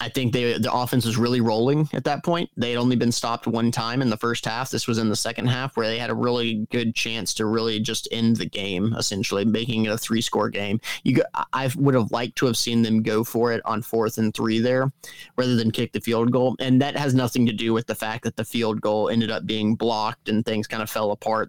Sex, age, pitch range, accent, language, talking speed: male, 30-49, 110-130 Hz, American, English, 260 wpm